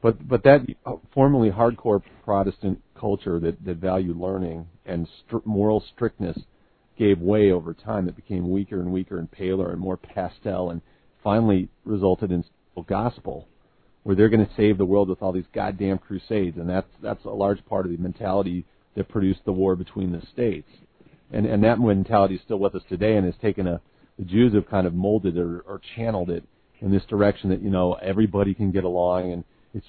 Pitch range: 95-115 Hz